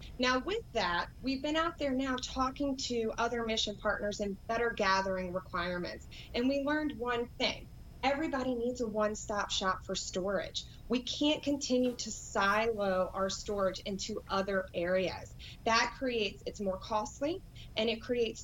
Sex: female